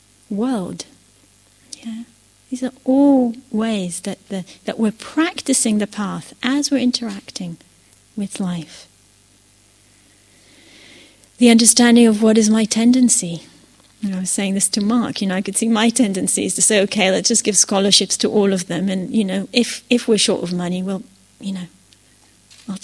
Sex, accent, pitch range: female, British, 175-245 Hz